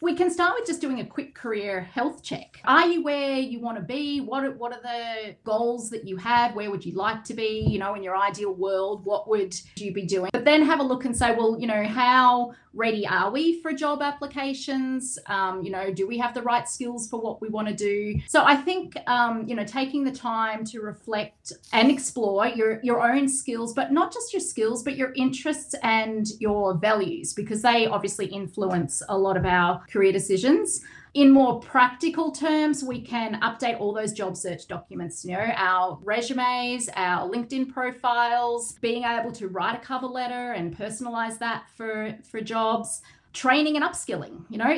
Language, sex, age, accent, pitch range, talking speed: English, female, 30-49, Australian, 205-255 Hz, 200 wpm